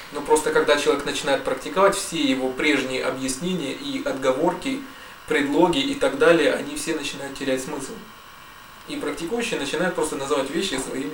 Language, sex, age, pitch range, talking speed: Russian, male, 20-39, 130-165 Hz, 150 wpm